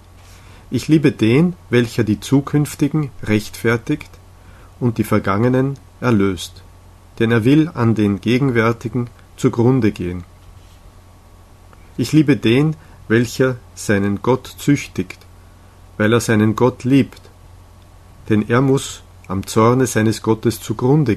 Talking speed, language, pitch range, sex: 110 wpm, German, 95-125 Hz, male